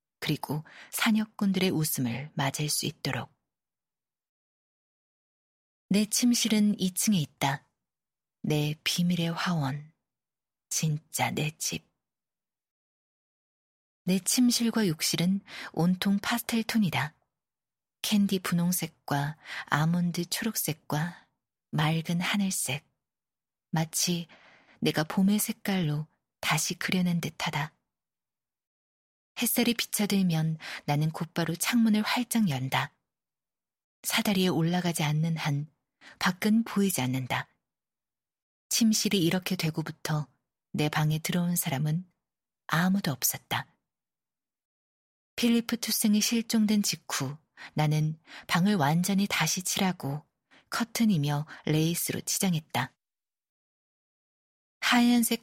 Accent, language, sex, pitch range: native, Korean, female, 155-205 Hz